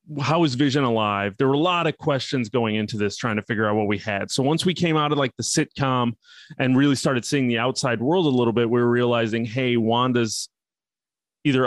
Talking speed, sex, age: 230 wpm, male, 30-49